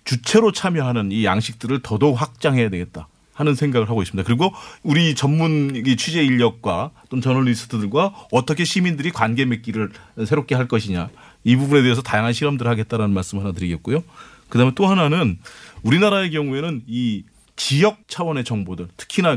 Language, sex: Korean, male